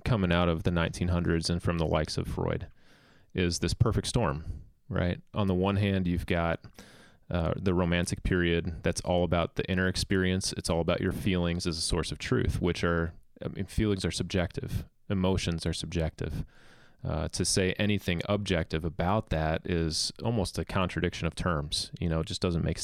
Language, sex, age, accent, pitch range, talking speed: English, male, 30-49, American, 85-95 Hz, 185 wpm